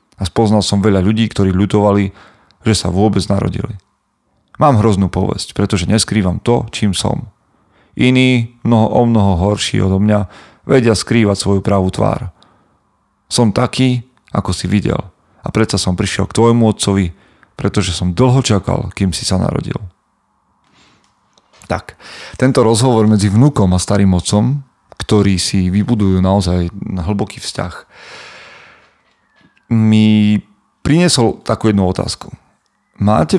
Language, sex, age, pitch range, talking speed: Slovak, male, 40-59, 95-110 Hz, 130 wpm